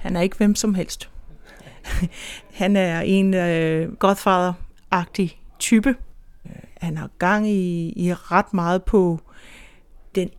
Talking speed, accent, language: 125 wpm, native, Danish